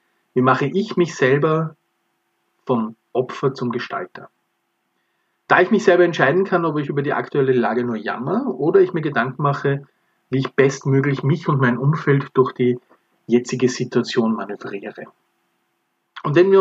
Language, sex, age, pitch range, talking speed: German, male, 40-59, 125-175 Hz, 155 wpm